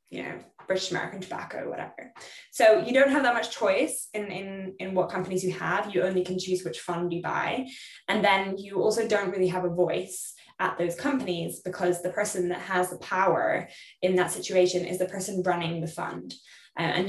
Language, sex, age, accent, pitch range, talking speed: English, female, 10-29, British, 175-215 Hz, 200 wpm